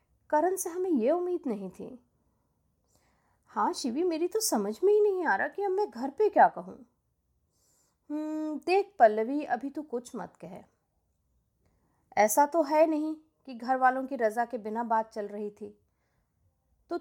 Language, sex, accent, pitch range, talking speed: Hindi, female, native, 230-320 Hz, 165 wpm